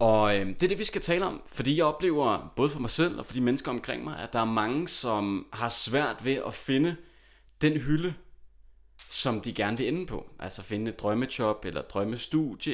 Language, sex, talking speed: Danish, male, 220 wpm